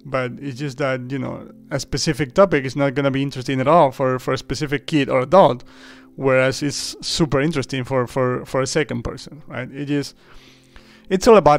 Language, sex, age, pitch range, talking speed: English, male, 30-49, 130-150 Hz, 205 wpm